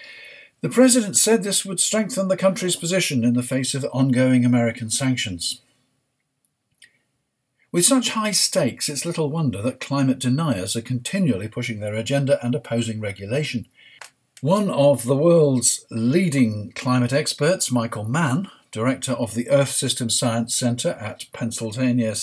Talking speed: 140 wpm